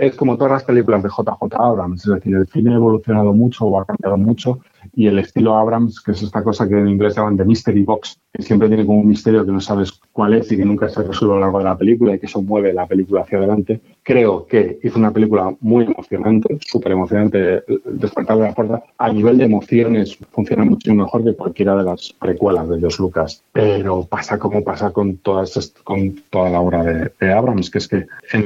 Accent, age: Spanish, 30-49